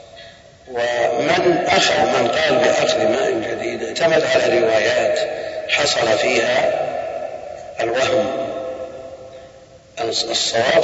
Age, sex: 50-69, male